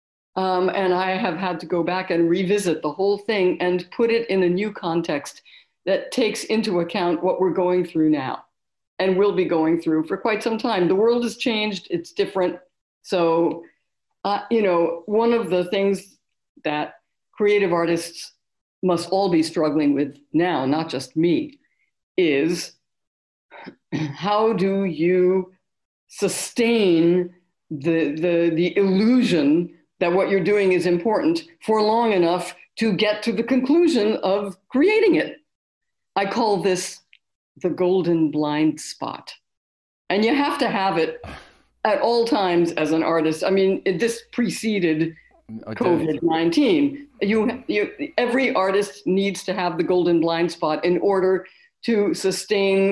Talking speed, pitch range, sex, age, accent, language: 145 wpm, 170-215 Hz, female, 50-69, American, English